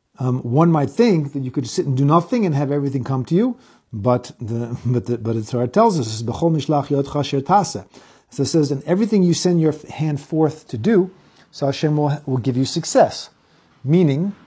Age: 40-59